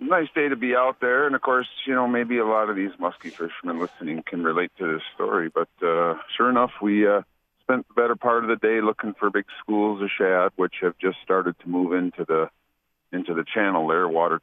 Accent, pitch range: American, 100-135 Hz